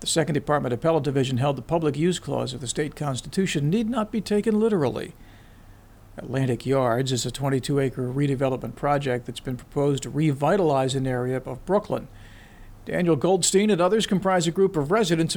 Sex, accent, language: male, American, English